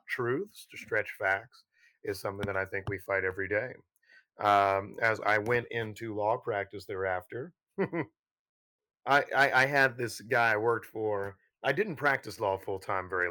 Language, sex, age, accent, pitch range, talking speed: English, male, 30-49, American, 100-130 Hz, 160 wpm